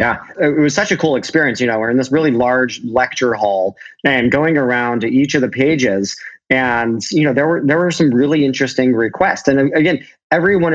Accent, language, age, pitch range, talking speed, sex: American, English, 30-49, 120-145 Hz, 210 wpm, male